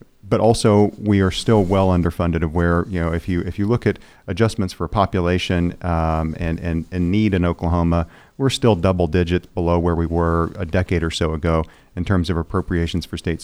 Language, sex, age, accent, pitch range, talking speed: English, male, 40-59, American, 85-110 Hz, 205 wpm